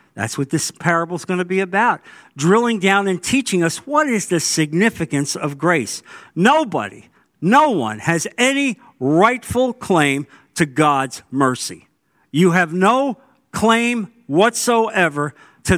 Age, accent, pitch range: 50-69, American, 130-190 Hz